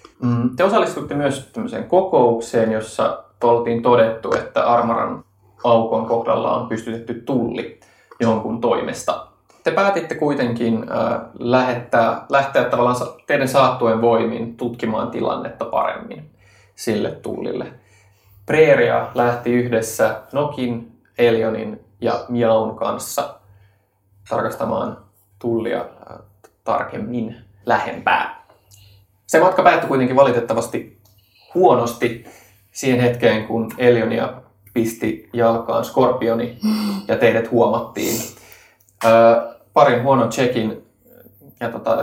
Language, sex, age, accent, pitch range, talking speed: Finnish, male, 20-39, native, 110-125 Hz, 90 wpm